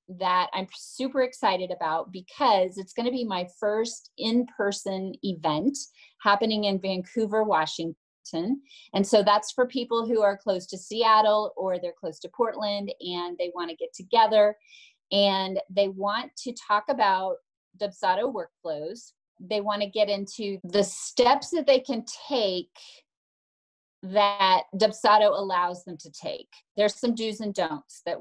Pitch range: 180-230 Hz